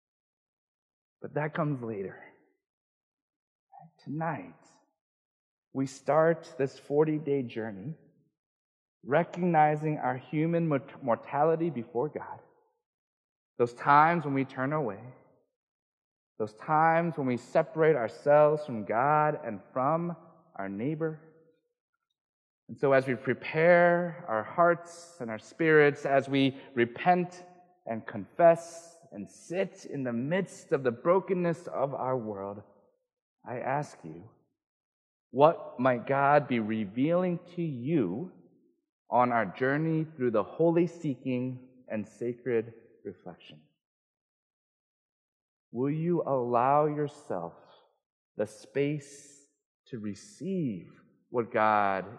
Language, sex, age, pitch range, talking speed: English, male, 40-59, 120-170 Hz, 105 wpm